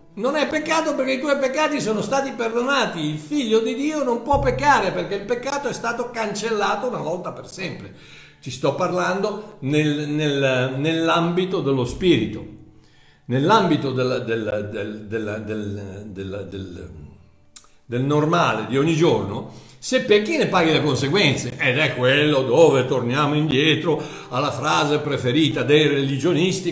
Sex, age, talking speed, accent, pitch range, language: male, 60-79, 125 wpm, native, 150-235 Hz, Italian